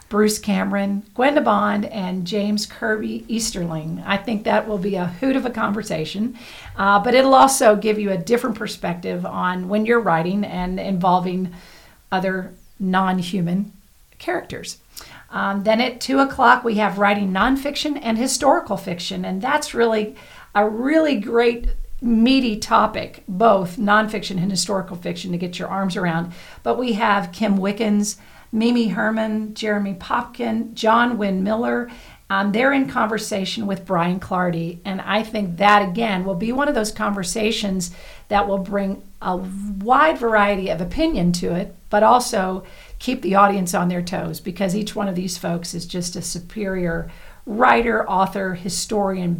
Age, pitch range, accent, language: 50-69, 185-225 Hz, American, English